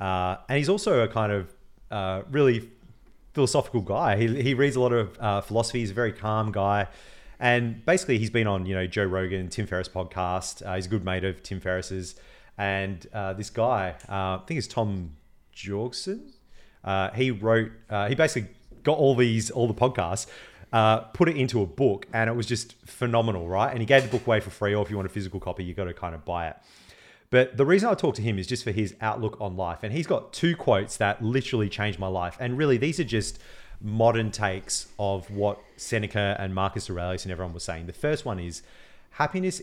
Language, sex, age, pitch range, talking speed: English, male, 30-49, 95-125 Hz, 220 wpm